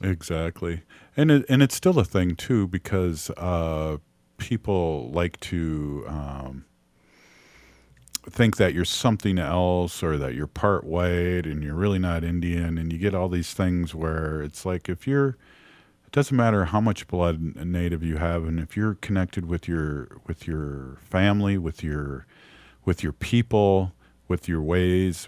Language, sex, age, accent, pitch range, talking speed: English, male, 50-69, American, 80-100 Hz, 160 wpm